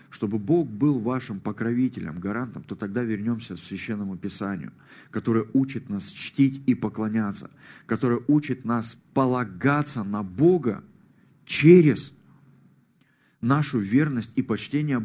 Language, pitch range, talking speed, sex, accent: Russian, 100-125 Hz, 115 wpm, male, native